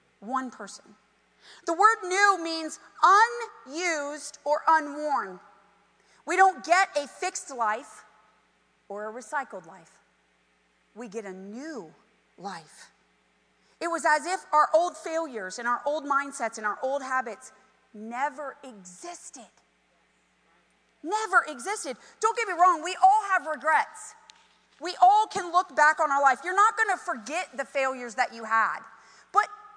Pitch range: 225-370 Hz